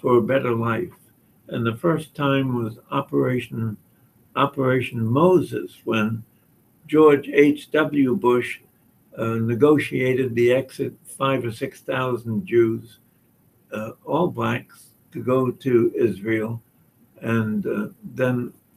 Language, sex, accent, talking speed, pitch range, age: English, male, American, 115 wpm, 115-140 Hz, 60-79